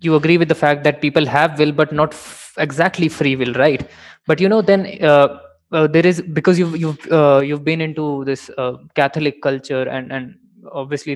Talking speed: 205 wpm